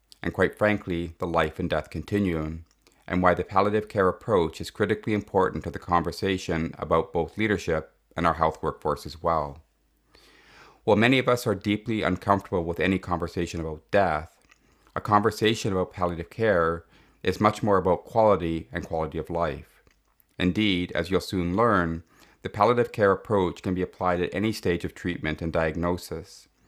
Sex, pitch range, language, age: male, 85-105 Hz, English, 30-49